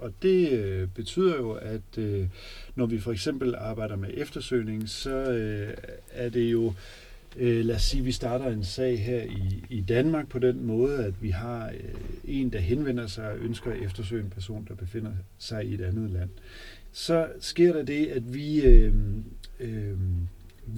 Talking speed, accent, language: 180 wpm, native, Danish